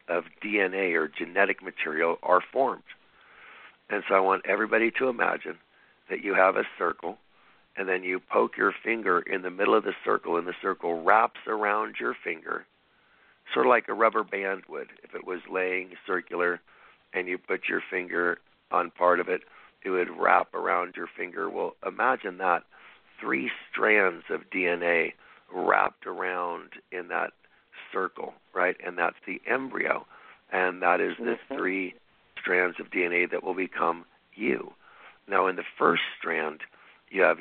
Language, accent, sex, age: English, American, male, 60-79